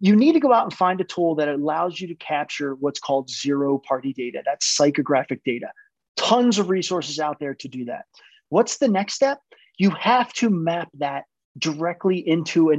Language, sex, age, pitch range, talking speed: English, male, 30-49, 145-195 Hz, 190 wpm